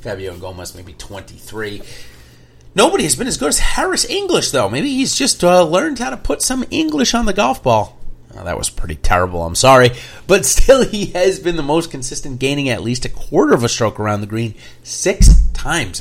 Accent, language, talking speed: American, English, 200 wpm